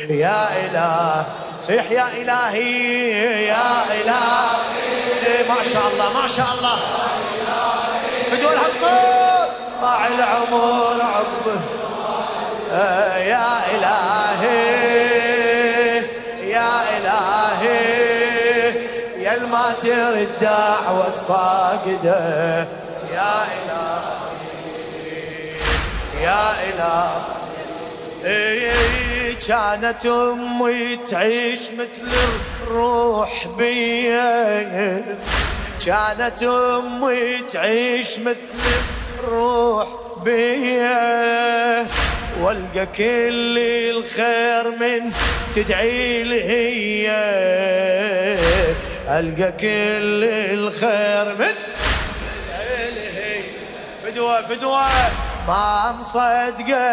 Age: 20-39